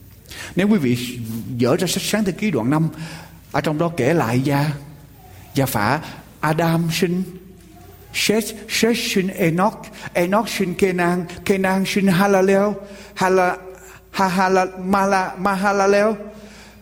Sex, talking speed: male, 95 wpm